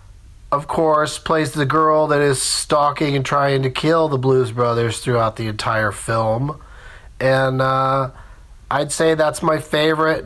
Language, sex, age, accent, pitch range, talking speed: English, male, 40-59, American, 105-155 Hz, 150 wpm